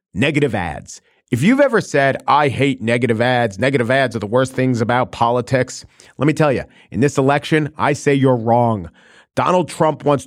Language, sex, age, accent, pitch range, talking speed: English, male, 40-59, American, 130-185 Hz, 185 wpm